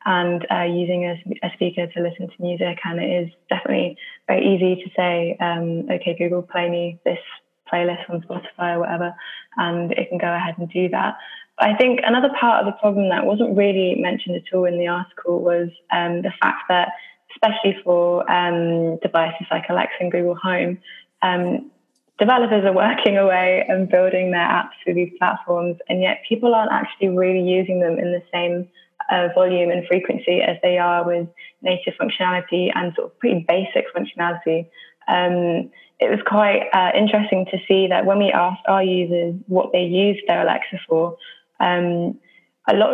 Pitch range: 175-195 Hz